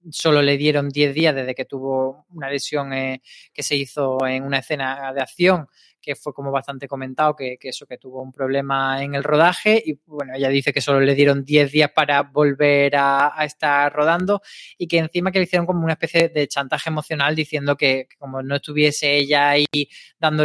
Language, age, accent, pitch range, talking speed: Spanish, 20-39, Spanish, 140-160 Hz, 210 wpm